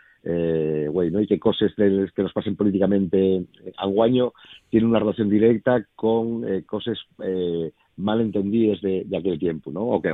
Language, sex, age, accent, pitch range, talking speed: Spanish, male, 50-69, Spanish, 85-105 Hz, 170 wpm